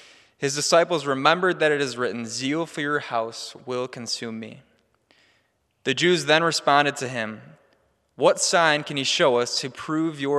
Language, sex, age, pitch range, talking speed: English, male, 20-39, 120-150 Hz, 170 wpm